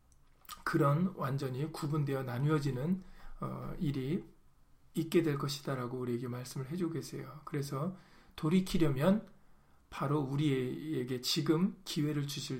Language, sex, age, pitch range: Korean, male, 40-59, 130-170 Hz